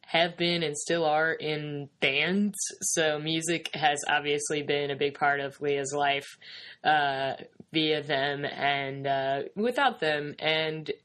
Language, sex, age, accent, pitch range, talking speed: English, female, 10-29, American, 145-185 Hz, 140 wpm